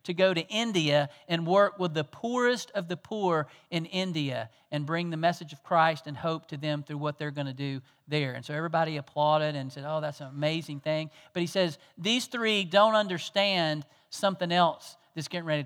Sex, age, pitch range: male, 40-59, 150-185 Hz